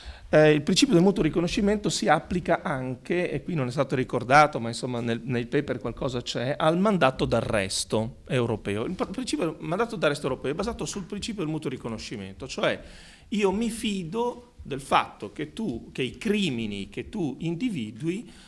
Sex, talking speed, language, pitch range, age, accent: male, 170 wpm, Italian, 130-200 Hz, 40-59, native